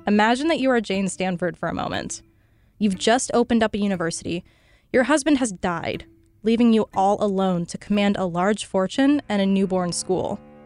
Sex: female